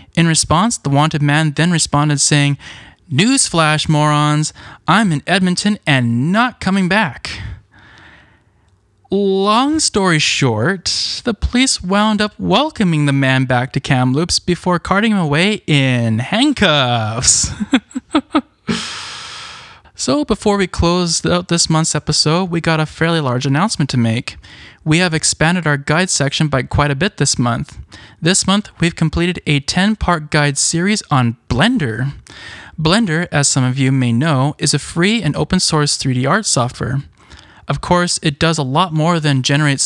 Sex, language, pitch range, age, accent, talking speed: male, English, 135-185 Hz, 10-29, American, 150 wpm